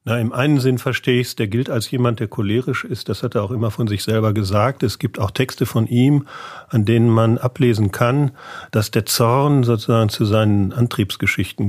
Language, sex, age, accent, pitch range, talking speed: German, male, 40-59, German, 105-125 Hz, 210 wpm